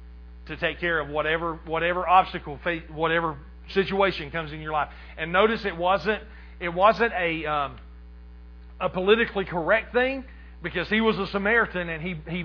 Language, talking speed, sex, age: English, 165 wpm, male, 40-59